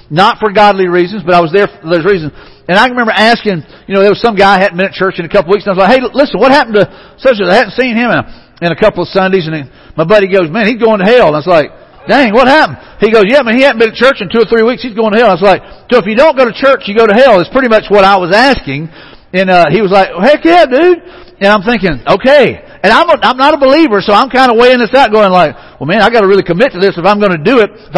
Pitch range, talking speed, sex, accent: 180-235 Hz, 330 wpm, male, American